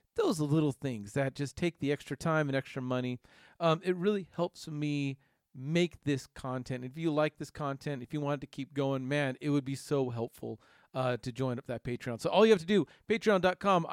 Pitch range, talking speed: 140-185 Hz, 215 wpm